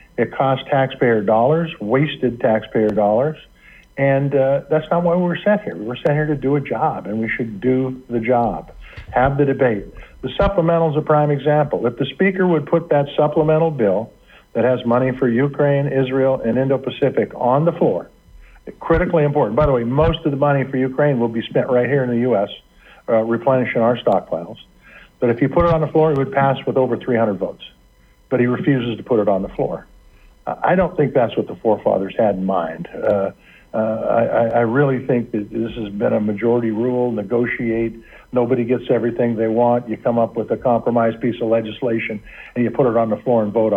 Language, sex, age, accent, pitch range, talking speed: English, male, 50-69, American, 115-145 Hz, 210 wpm